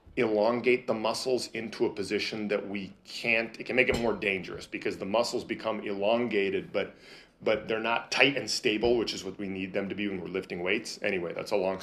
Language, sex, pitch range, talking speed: English, male, 100-115 Hz, 220 wpm